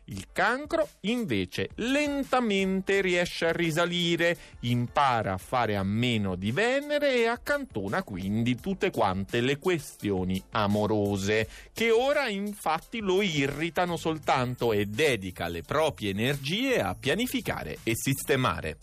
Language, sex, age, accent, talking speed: Italian, male, 30-49, native, 120 wpm